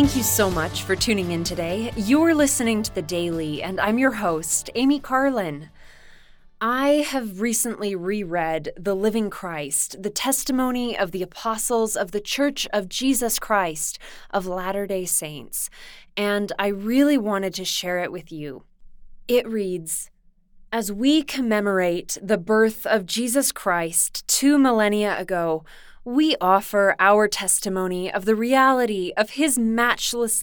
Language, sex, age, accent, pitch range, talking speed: English, female, 20-39, American, 185-245 Hz, 140 wpm